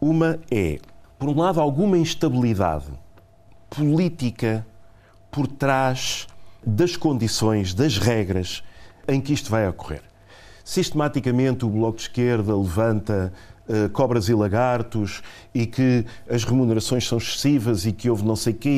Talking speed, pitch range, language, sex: 130 wpm, 105-130 Hz, Portuguese, male